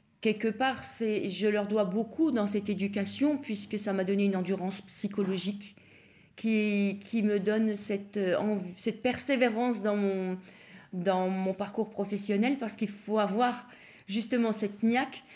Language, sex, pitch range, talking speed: French, female, 185-220 Hz, 145 wpm